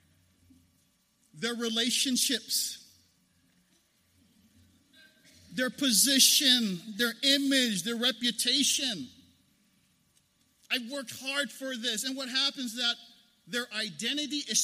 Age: 50-69